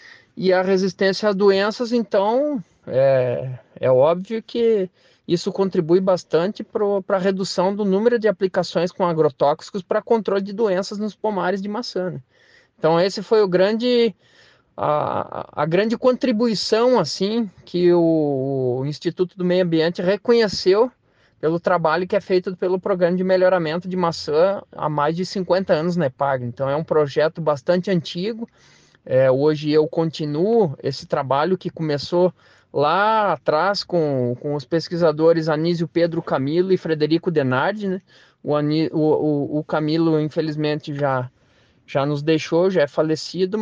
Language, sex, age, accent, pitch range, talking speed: Portuguese, male, 20-39, Brazilian, 150-195 Hz, 145 wpm